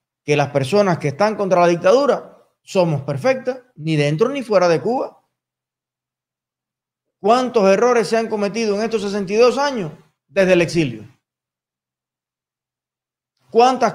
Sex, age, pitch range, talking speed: male, 30-49, 155-200 Hz, 125 wpm